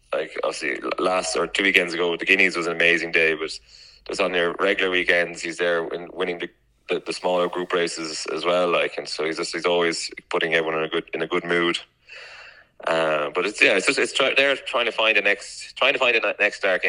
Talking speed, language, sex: 240 wpm, English, male